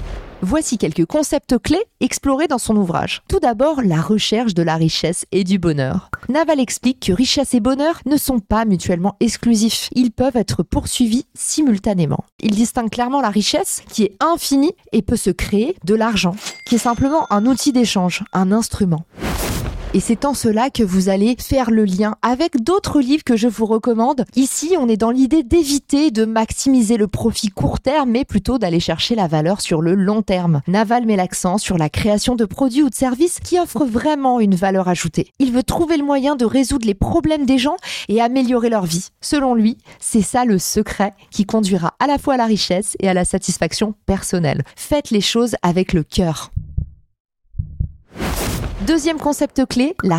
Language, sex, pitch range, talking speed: French, female, 195-270 Hz, 185 wpm